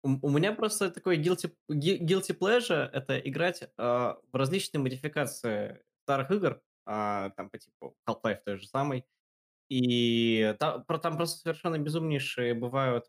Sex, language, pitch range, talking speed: male, Russian, 110-150 Hz, 125 wpm